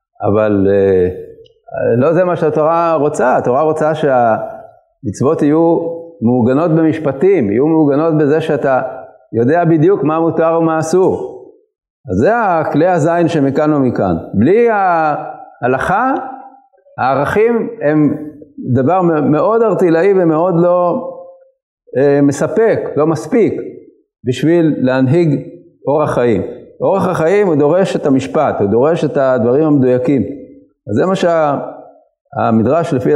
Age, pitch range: 50-69, 140-190 Hz